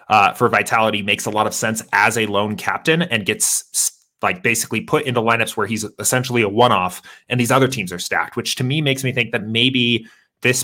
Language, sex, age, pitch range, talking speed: English, male, 30-49, 100-120 Hz, 220 wpm